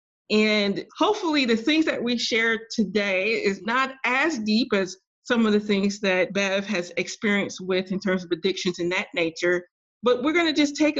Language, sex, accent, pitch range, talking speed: English, female, American, 190-260 Hz, 190 wpm